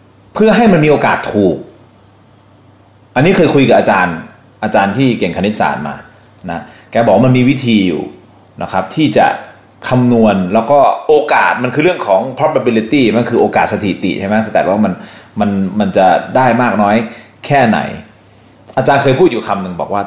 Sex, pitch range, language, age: male, 110-150 Hz, Thai, 30-49